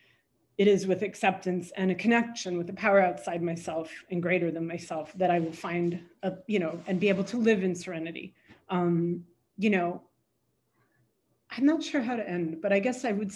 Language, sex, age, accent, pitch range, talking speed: English, female, 30-49, American, 180-230 Hz, 195 wpm